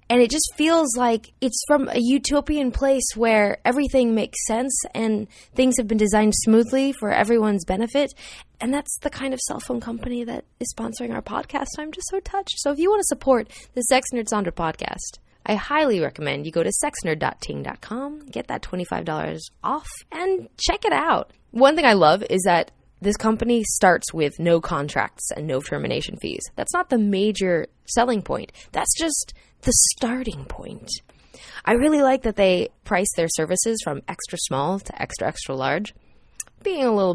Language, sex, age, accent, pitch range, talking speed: English, female, 20-39, American, 210-285 Hz, 180 wpm